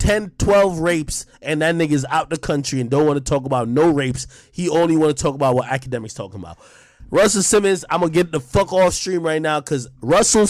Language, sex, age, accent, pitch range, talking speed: English, male, 20-39, American, 115-180 Hz, 235 wpm